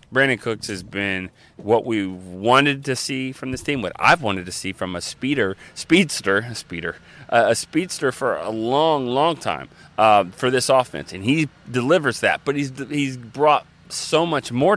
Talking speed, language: 185 wpm, English